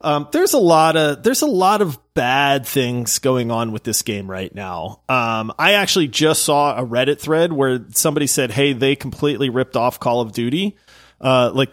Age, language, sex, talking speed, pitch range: 30-49, English, male, 200 wpm, 130-165 Hz